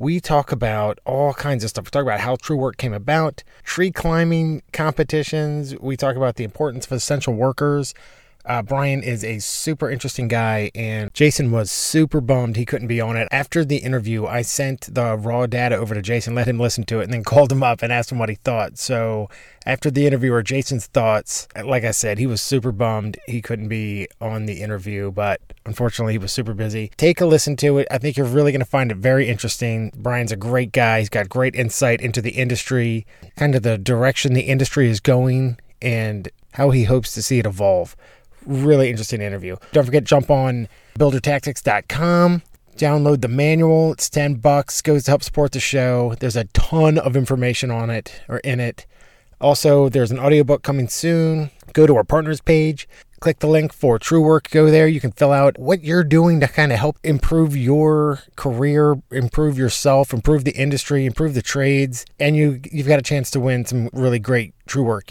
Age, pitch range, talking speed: 20-39, 120-145 Hz, 205 wpm